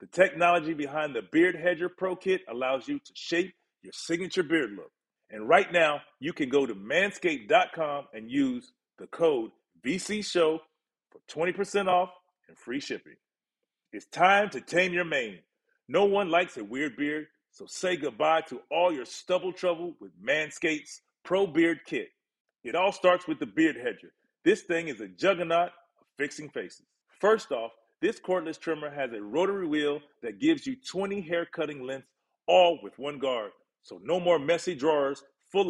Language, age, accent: English, 40-59, American